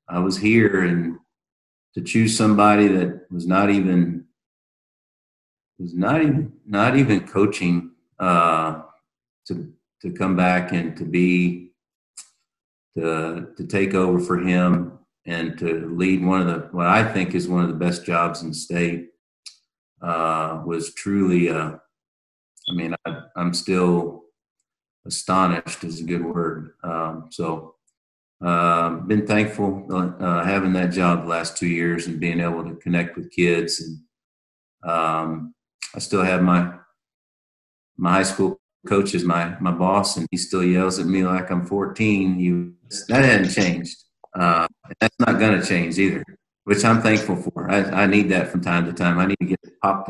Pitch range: 85-95 Hz